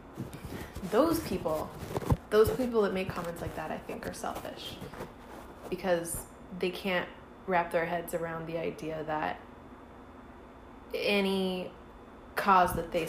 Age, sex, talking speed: 20-39, female, 125 wpm